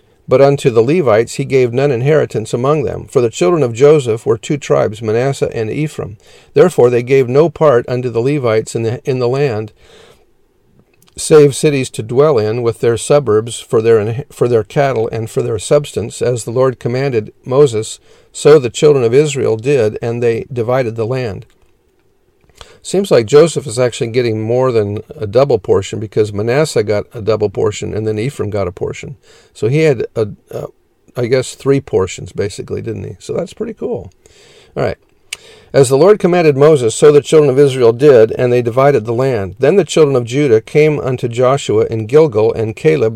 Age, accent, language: 50-69, American, English